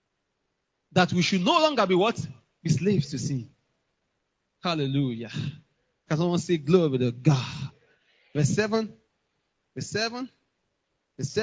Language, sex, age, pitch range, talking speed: English, male, 20-39, 150-225 Hz, 120 wpm